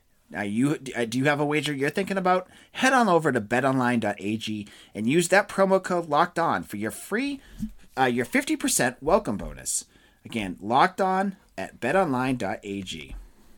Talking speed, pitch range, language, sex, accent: 155 wpm, 115-175 Hz, English, male, American